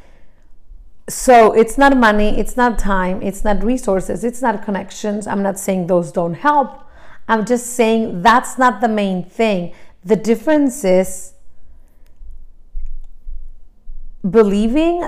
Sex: female